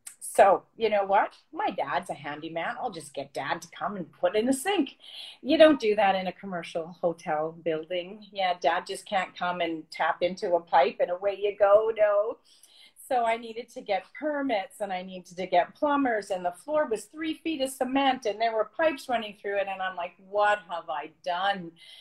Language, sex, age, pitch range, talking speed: English, female, 40-59, 170-215 Hz, 210 wpm